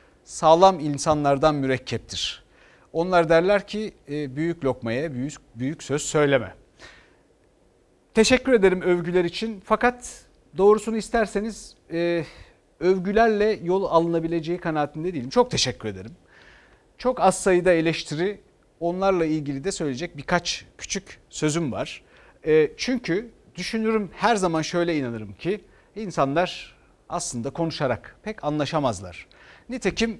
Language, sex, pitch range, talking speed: Turkish, male, 140-190 Hz, 105 wpm